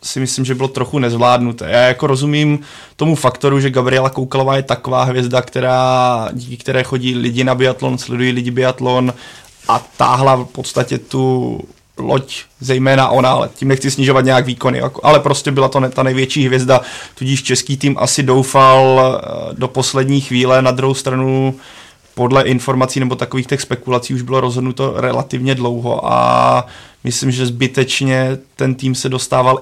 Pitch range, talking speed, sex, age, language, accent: 125-135 Hz, 160 wpm, male, 20-39, Czech, native